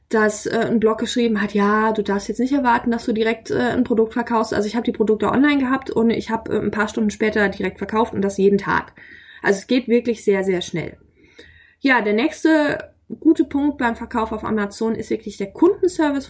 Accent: German